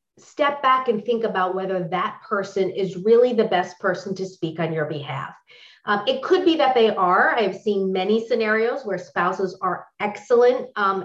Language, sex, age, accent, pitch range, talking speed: English, female, 30-49, American, 180-225 Hz, 185 wpm